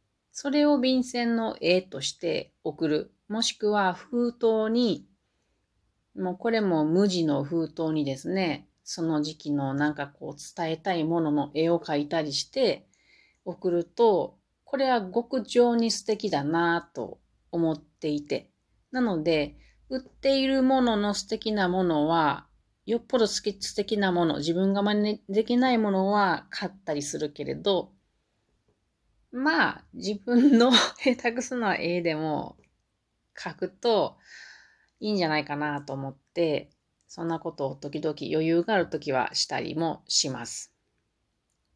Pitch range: 155-225 Hz